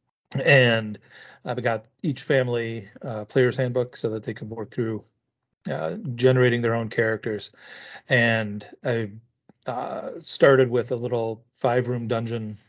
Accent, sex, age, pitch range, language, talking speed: American, male, 40-59, 115-130 Hz, English, 135 wpm